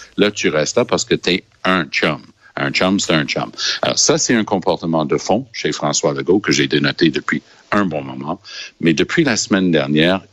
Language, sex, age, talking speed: French, male, 60-79, 215 wpm